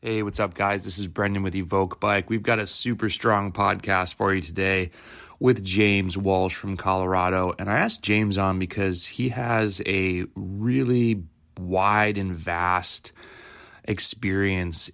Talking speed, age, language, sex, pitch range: 155 wpm, 30-49, English, male, 90-105 Hz